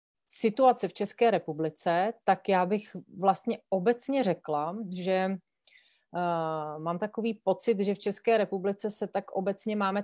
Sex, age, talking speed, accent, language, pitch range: female, 30-49, 130 wpm, native, Czech, 170-195 Hz